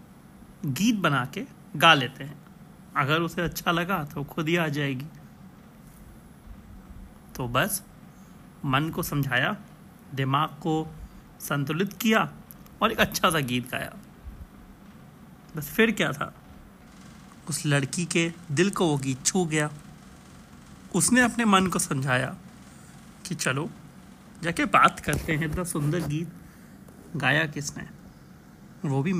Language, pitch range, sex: Hindi, 150-190 Hz, male